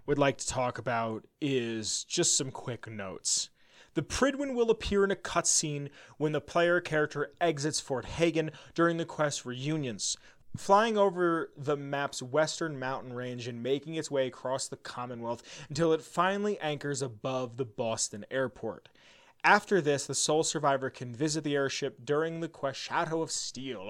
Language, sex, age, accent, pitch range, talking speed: English, male, 30-49, American, 130-165 Hz, 165 wpm